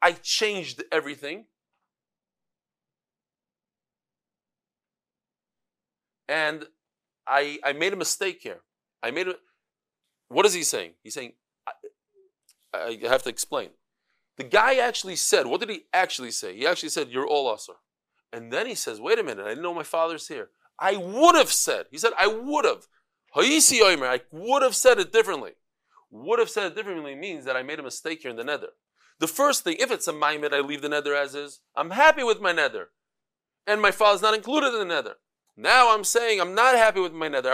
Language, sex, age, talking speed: English, male, 40-59, 190 wpm